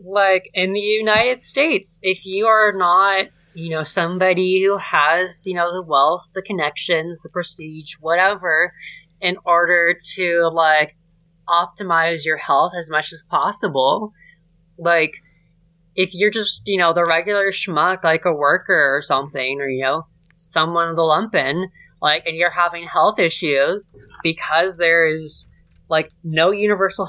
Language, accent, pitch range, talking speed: English, American, 165-195 Hz, 150 wpm